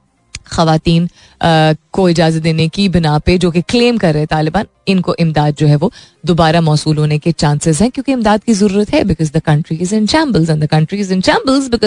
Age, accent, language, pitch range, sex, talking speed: 30-49, native, Hindi, 155-210 Hz, female, 175 wpm